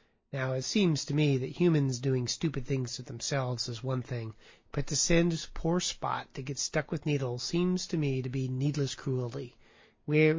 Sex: male